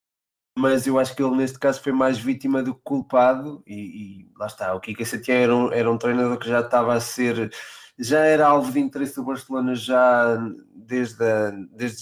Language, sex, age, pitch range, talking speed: Portuguese, male, 20-39, 115-135 Hz, 205 wpm